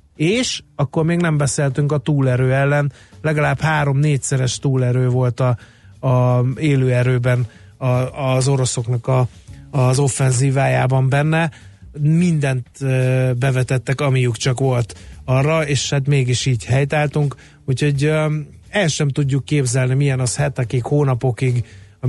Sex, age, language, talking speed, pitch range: male, 30-49, Hungarian, 115 wpm, 125-145 Hz